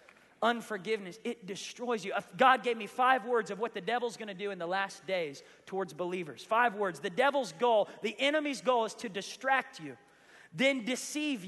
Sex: male